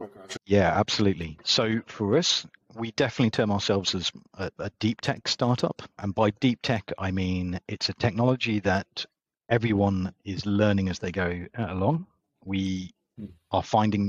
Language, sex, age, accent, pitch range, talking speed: English, male, 40-59, British, 95-115 Hz, 150 wpm